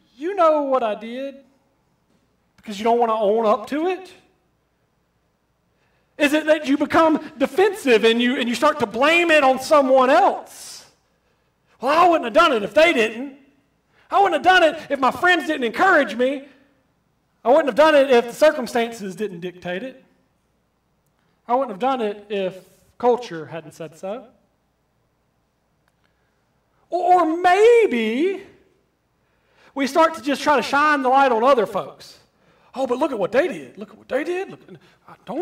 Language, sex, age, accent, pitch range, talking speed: English, male, 40-59, American, 220-315 Hz, 165 wpm